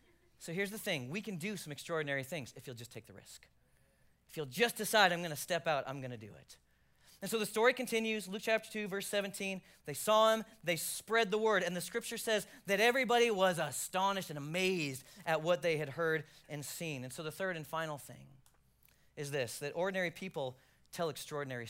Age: 40-59